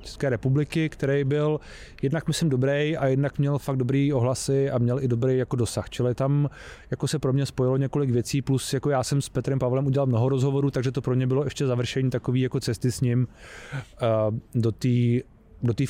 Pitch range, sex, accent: 115-135 Hz, male, native